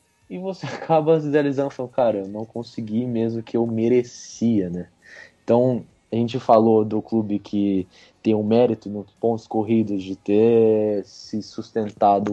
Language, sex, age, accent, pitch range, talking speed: Portuguese, male, 20-39, Brazilian, 105-125 Hz, 165 wpm